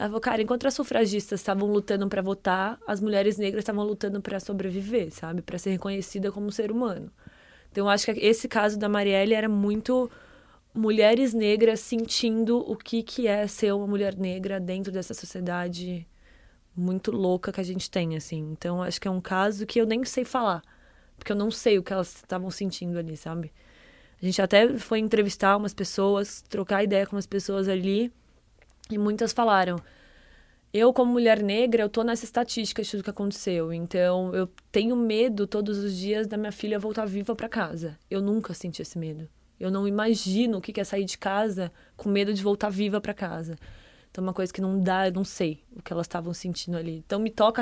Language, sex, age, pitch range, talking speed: Portuguese, female, 20-39, 190-220 Hz, 200 wpm